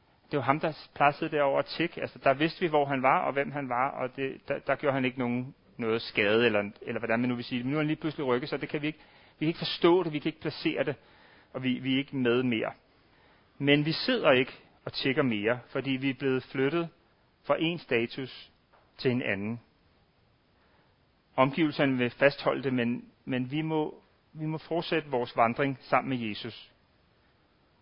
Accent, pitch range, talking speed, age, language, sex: native, 120-150 Hz, 205 wpm, 40-59, Danish, male